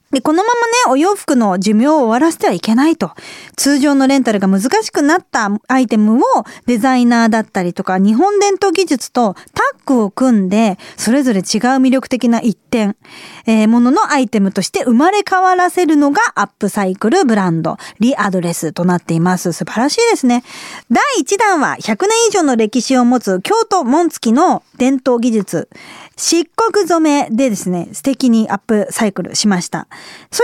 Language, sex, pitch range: Japanese, female, 215-325 Hz